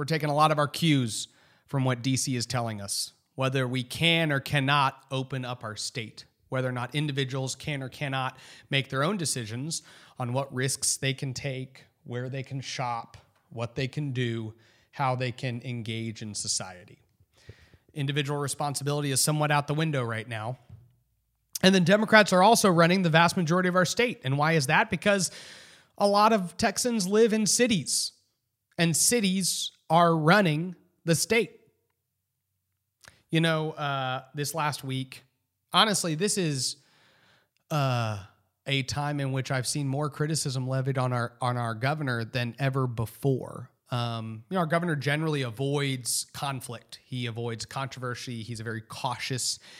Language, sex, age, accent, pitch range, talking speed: English, male, 30-49, American, 120-150 Hz, 160 wpm